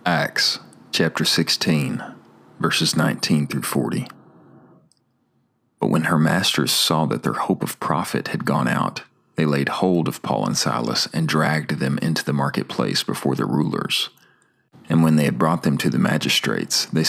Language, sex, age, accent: English, male, 40-59, American